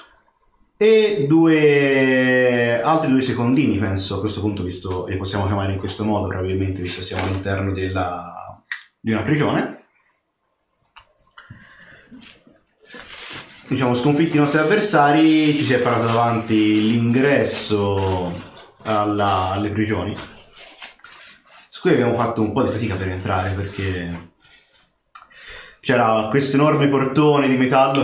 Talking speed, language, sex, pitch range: 120 wpm, Italian, male, 100-130 Hz